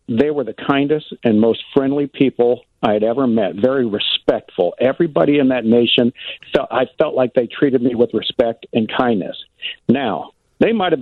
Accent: American